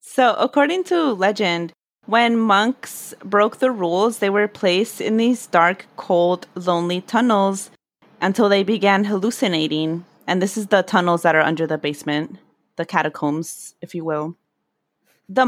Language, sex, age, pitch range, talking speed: English, female, 20-39, 170-210 Hz, 145 wpm